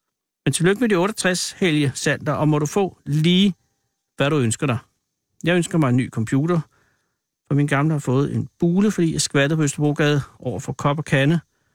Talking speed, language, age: 185 wpm, Danish, 60-79